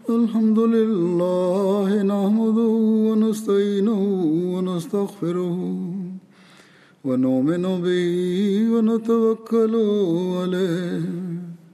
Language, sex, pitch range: English, male, 175-220 Hz